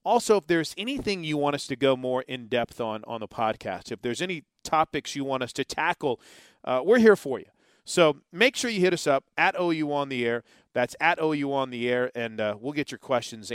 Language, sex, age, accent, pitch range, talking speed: English, male, 40-59, American, 120-165 Hz, 235 wpm